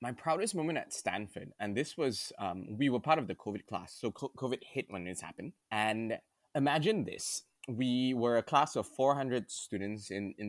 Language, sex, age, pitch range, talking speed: English, male, 20-39, 100-135 Hz, 195 wpm